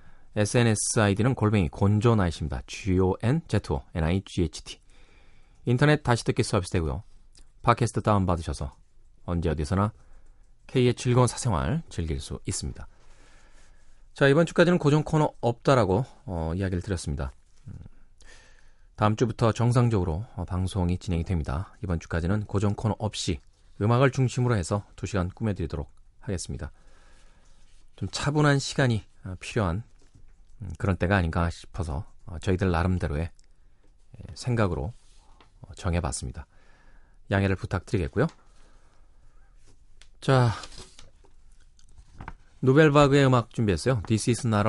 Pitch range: 85-115 Hz